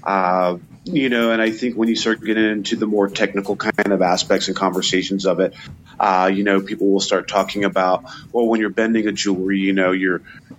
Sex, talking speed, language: male, 215 wpm, English